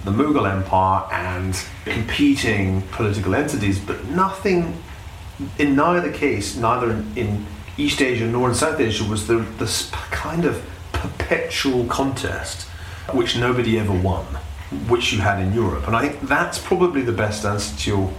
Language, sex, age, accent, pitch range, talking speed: English, male, 30-49, British, 90-110 Hz, 150 wpm